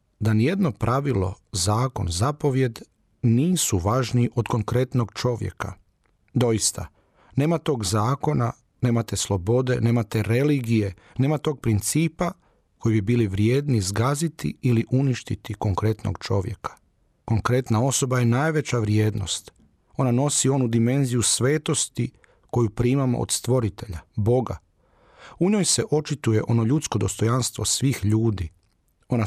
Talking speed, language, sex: 115 wpm, Croatian, male